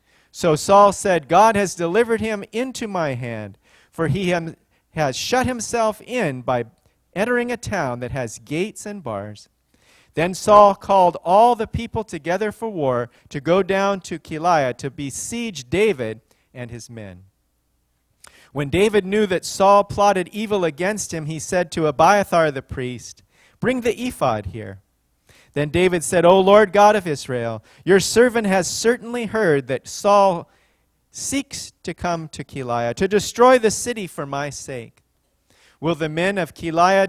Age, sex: 40-59, male